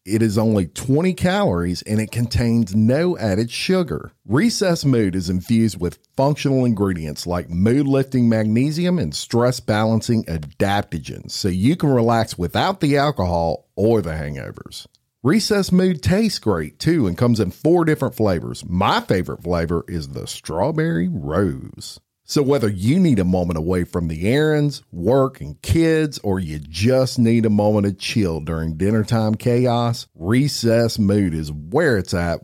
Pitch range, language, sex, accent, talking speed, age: 85-130 Hz, English, male, American, 150 wpm, 50-69